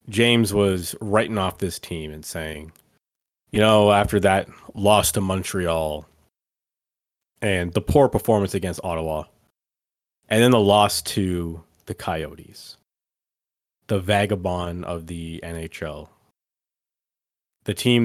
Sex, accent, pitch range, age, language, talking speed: male, American, 90-115 Hz, 30-49, English, 115 wpm